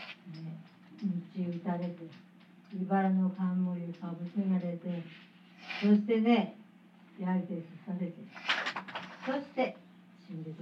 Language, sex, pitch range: Japanese, female, 185-225 Hz